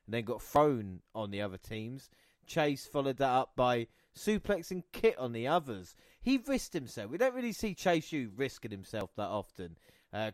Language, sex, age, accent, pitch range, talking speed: English, male, 30-49, British, 110-140 Hz, 180 wpm